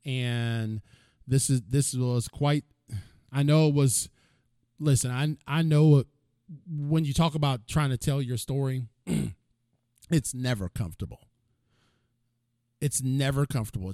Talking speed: 125 wpm